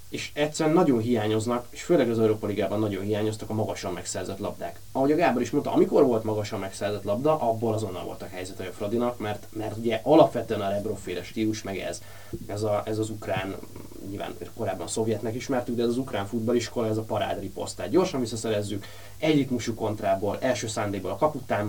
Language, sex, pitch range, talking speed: Hungarian, male, 100-120 Hz, 190 wpm